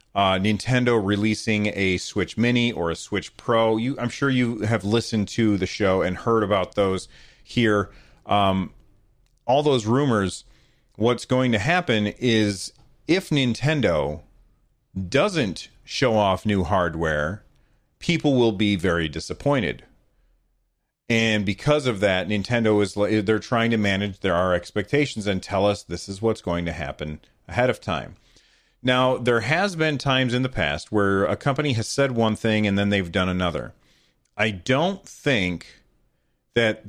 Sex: male